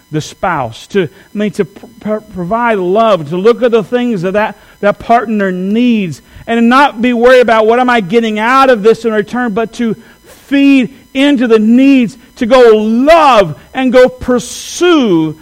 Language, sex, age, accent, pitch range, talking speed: English, male, 50-69, American, 165-245 Hz, 180 wpm